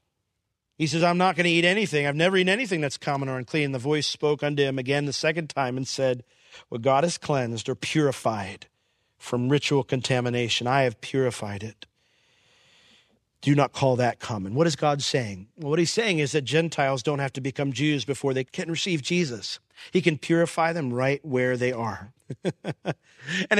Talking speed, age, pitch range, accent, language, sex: 195 wpm, 40-59, 130-215 Hz, American, English, male